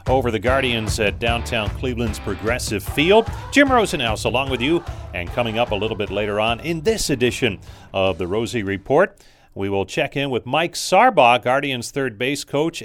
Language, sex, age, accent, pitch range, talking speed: English, male, 40-59, American, 105-145 Hz, 180 wpm